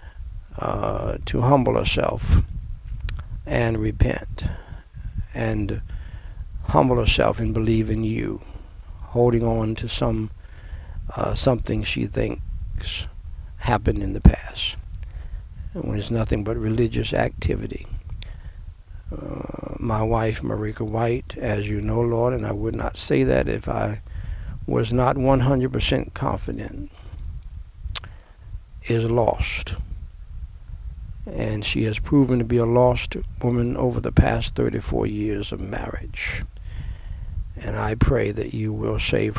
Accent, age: American, 60-79